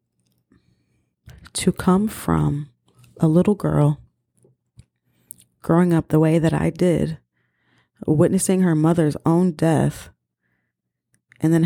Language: English